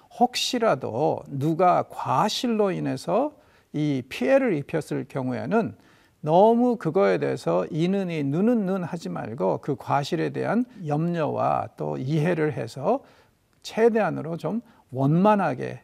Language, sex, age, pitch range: Korean, male, 50-69, 140-205 Hz